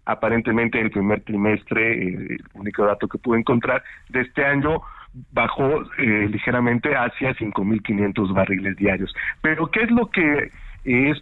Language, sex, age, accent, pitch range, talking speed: Spanish, male, 50-69, Mexican, 105-135 Hz, 140 wpm